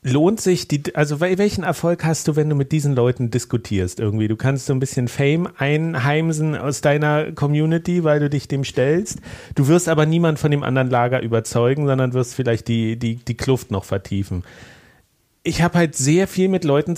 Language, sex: German, male